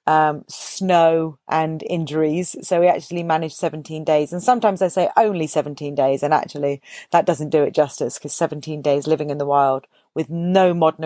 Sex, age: female, 40-59